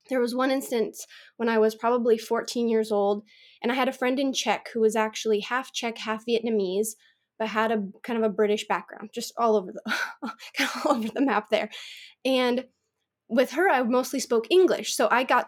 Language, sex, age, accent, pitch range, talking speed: English, female, 20-39, American, 215-265 Hz, 210 wpm